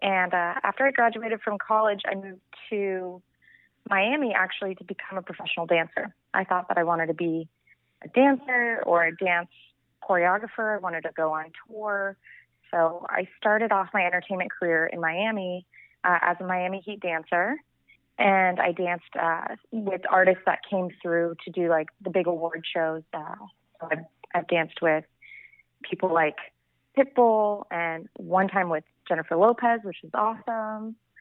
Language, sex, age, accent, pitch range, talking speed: English, female, 30-49, American, 170-205 Hz, 160 wpm